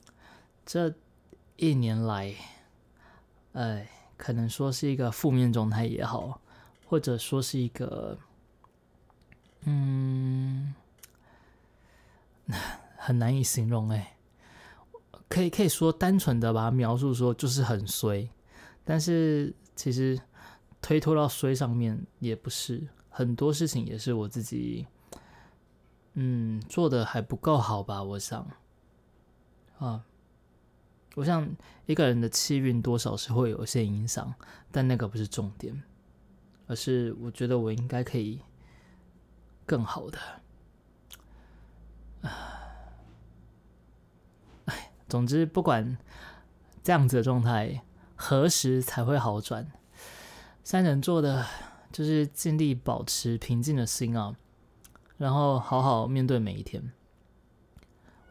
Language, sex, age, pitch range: Chinese, male, 20-39, 110-135 Hz